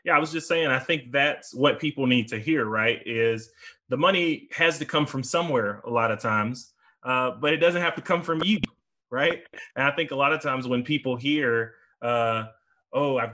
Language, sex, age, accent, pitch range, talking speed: English, male, 20-39, American, 115-145 Hz, 220 wpm